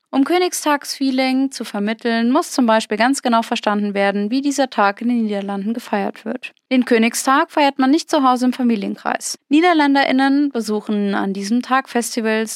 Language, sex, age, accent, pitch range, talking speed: German, female, 20-39, German, 215-275 Hz, 160 wpm